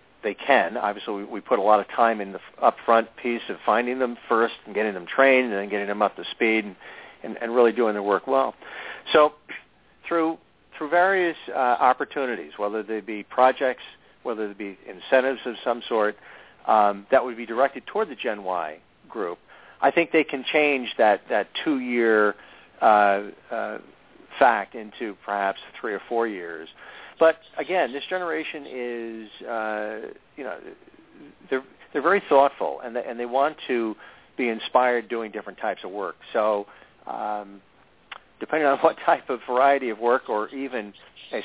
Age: 50-69